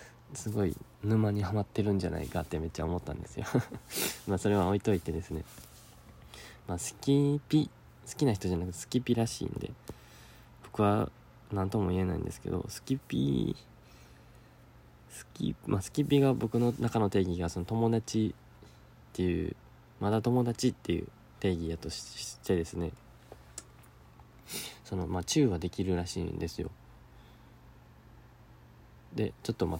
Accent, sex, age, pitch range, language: native, male, 20-39, 90-115 Hz, Japanese